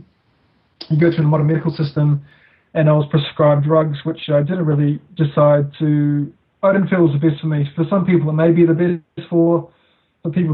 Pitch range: 150-165 Hz